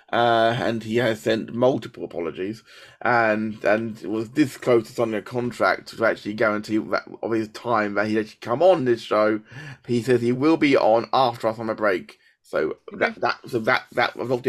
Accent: British